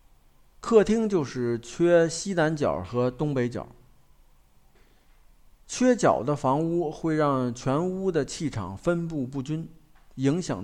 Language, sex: Chinese, male